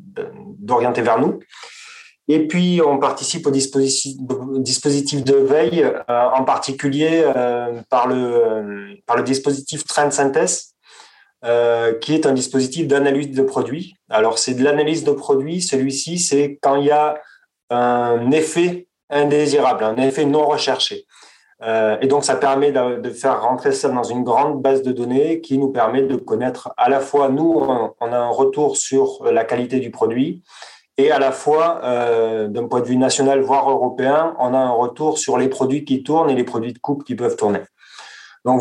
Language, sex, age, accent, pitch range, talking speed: French, male, 30-49, French, 125-150 Hz, 175 wpm